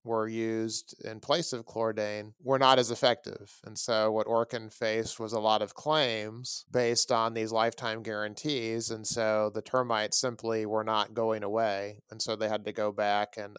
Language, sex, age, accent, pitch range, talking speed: English, male, 30-49, American, 105-120 Hz, 185 wpm